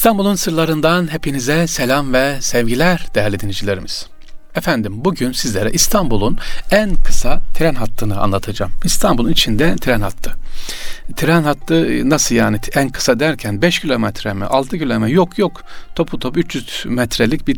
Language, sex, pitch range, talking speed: Turkish, male, 110-155 Hz, 135 wpm